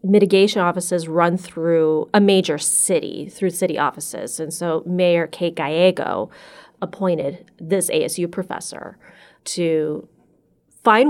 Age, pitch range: 30-49, 170-210 Hz